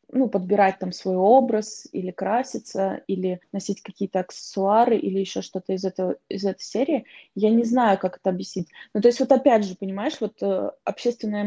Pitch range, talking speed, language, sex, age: 200-240 Hz, 180 wpm, Russian, female, 20-39